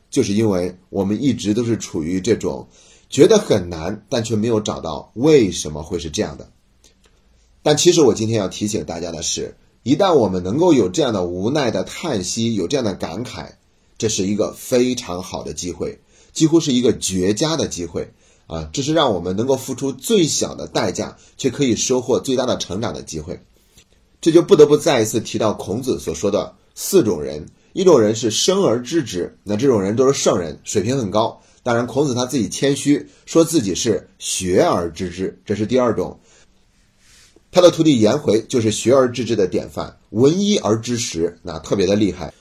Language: Chinese